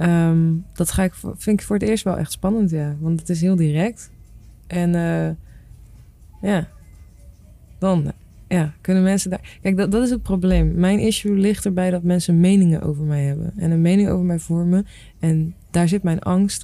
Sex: female